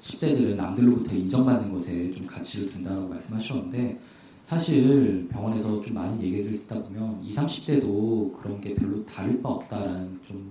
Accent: native